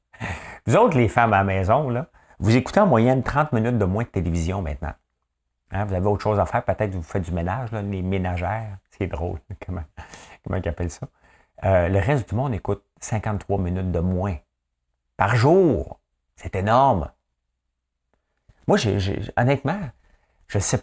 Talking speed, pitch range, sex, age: 170 wpm, 80-110 Hz, male, 50-69